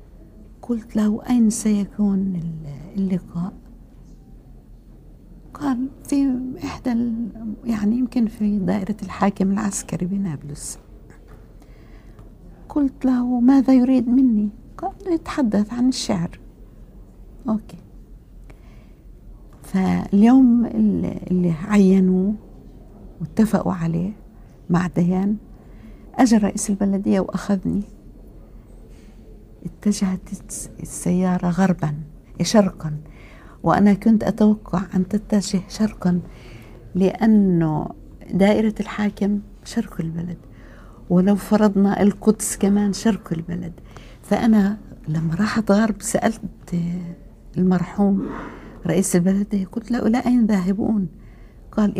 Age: 60-79